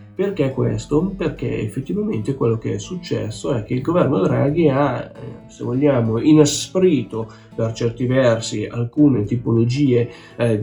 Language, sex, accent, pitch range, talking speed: Italian, male, native, 115-145 Hz, 130 wpm